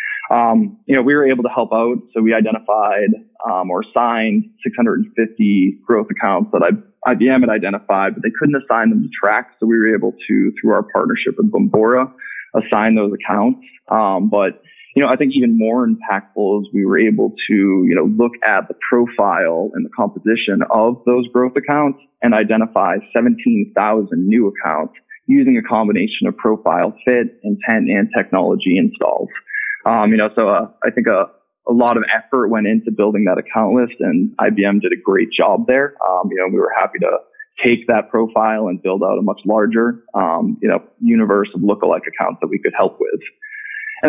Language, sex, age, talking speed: English, male, 20-39, 190 wpm